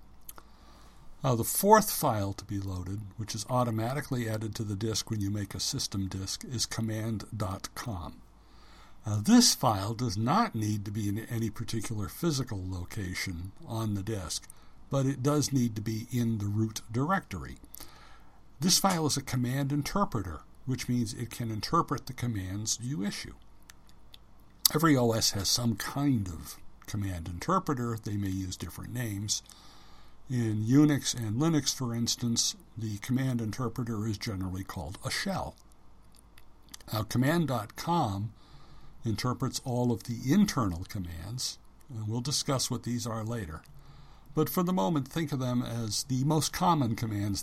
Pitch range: 100-130 Hz